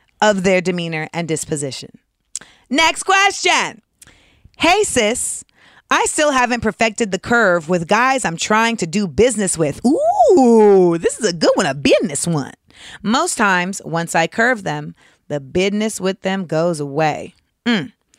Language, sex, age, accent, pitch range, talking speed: English, female, 30-49, American, 175-250 Hz, 150 wpm